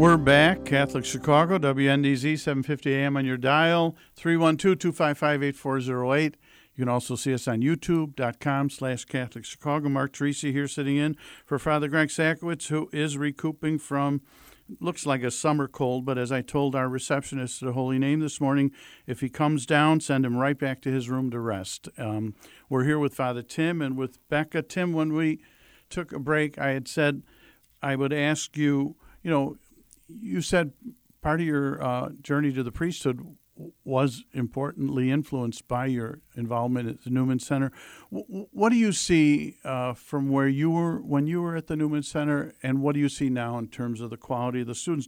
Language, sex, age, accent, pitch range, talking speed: English, male, 50-69, American, 130-155 Hz, 185 wpm